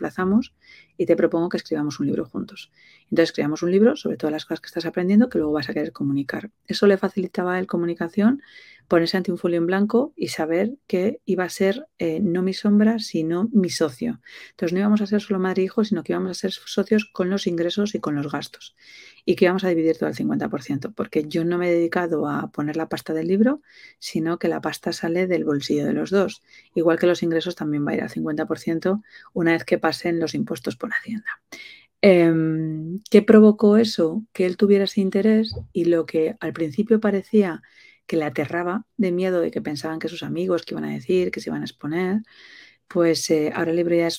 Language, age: Spanish, 40-59